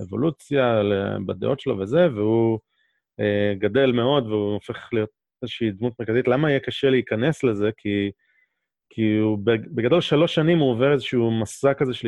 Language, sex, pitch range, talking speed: Hebrew, male, 105-135 Hz, 155 wpm